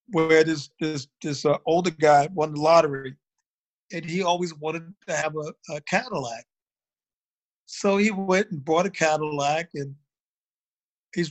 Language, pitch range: English, 155-190 Hz